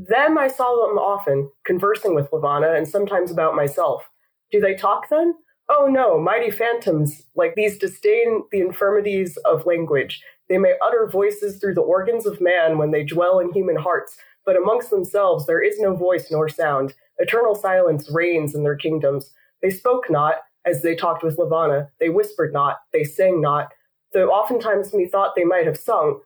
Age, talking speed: 20-39, 180 wpm